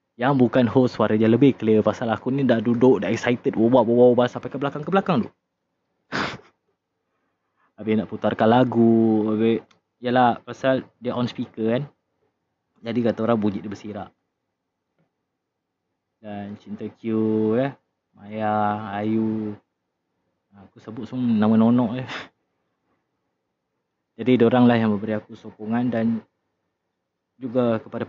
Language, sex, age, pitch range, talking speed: Malay, male, 20-39, 105-120 Hz, 130 wpm